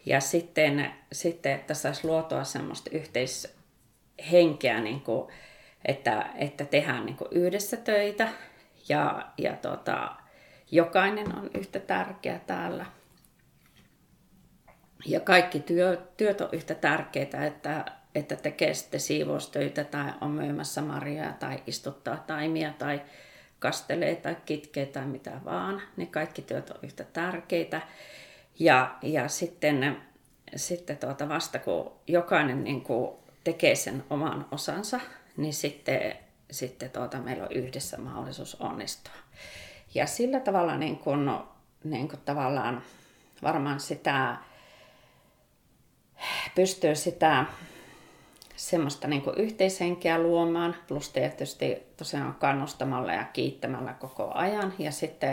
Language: Finnish